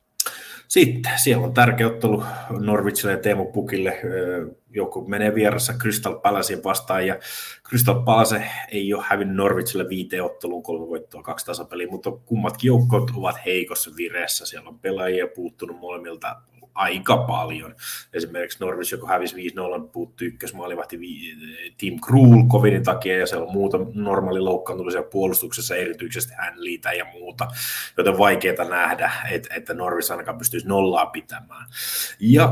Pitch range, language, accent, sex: 100-125 Hz, Finnish, native, male